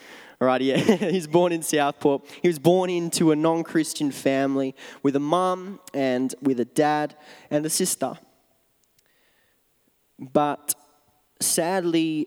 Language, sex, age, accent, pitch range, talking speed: English, male, 20-39, Australian, 135-165 Hz, 120 wpm